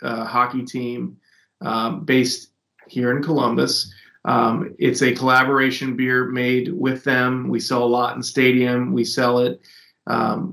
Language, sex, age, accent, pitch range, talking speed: English, male, 30-49, American, 125-140 Hz, 150 wpm